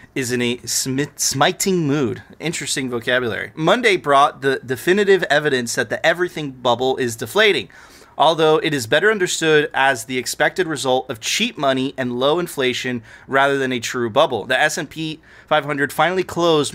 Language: English